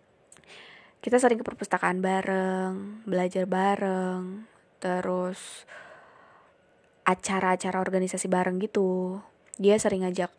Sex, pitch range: female, 185-220 Hz